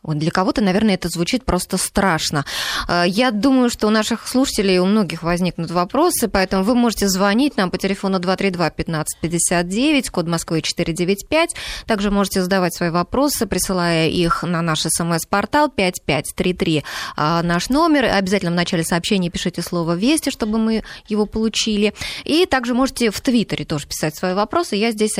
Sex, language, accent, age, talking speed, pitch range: female, Russian, native, 20-39, 150 wpm, 175-240 Hz